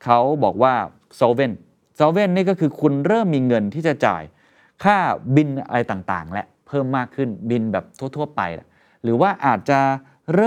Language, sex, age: Thai, male, 30-49